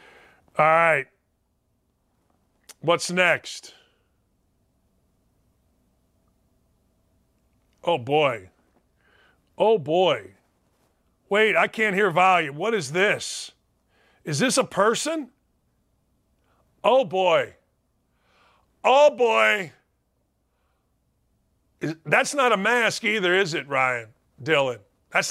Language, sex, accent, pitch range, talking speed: English, male, American, 165-225 Hz, 85 wpm